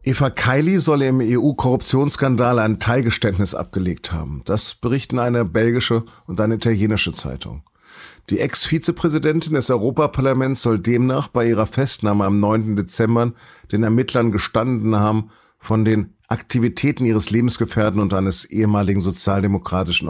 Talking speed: 125 wpm